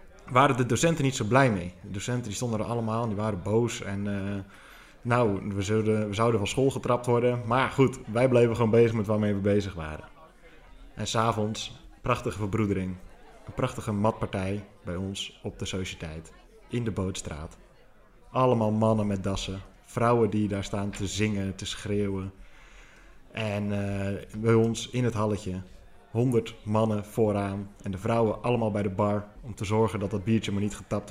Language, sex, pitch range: Dutch, male, 100-120 Hz